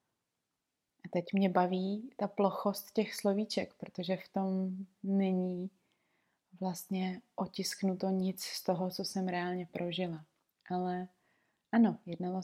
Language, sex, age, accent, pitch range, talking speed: Czech, female, 30-49, native, 185-200 Hz, 115 wpm